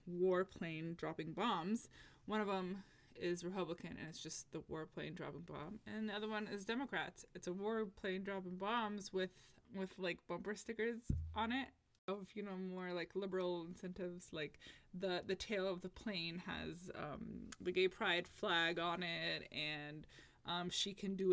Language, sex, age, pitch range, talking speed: English, female, 20-39, 170-195 Hz, 175 wpm